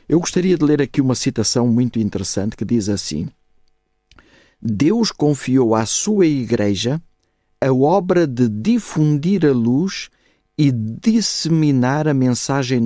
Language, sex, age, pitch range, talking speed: Portuguese, male, 50-69, 110-150 Hz, 125 wpm